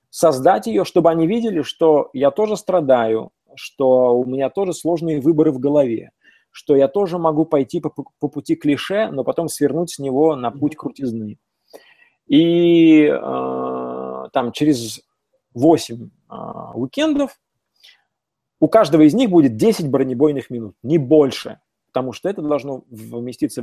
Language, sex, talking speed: Russian, male, 140 wpm